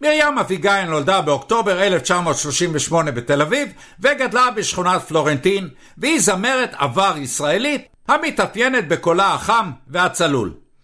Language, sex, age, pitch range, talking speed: English, male, 60-79, 150-240 Hz, 100 wpm